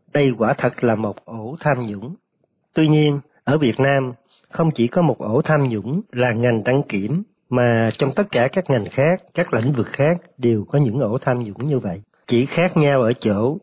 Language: Vietnamese